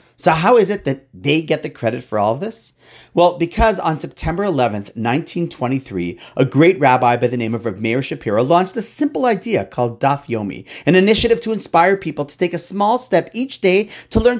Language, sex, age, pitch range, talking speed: English, male, 40-59, 125-195 Hz, 210 wpm